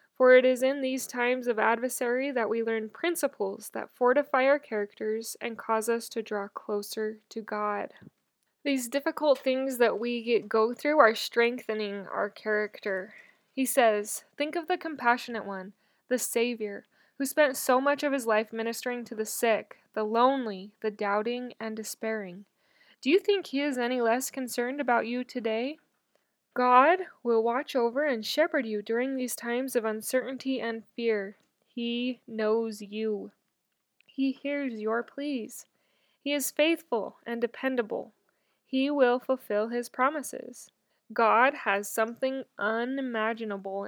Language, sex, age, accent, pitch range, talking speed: English, female, 10-29, American, 215-265 Hz, 145 wpm